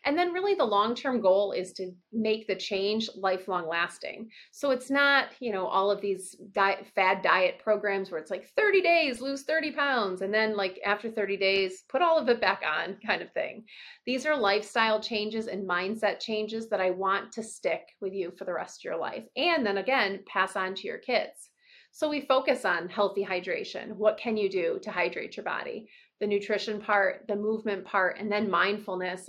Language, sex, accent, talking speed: English, female, American, 205 wpm